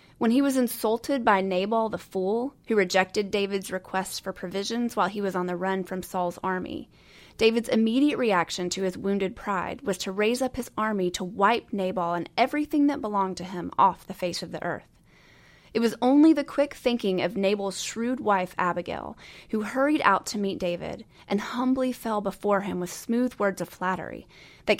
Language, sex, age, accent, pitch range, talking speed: English, female, 30-49, American, 180-235 Hz, 190 wpm